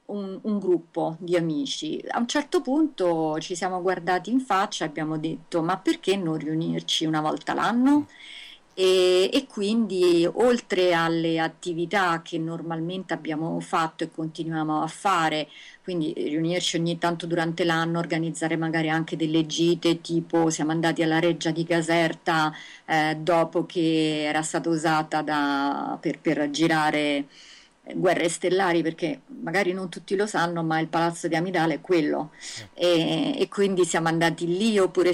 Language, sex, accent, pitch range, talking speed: Italian, female, native, 160-190 Hz, 150 wpm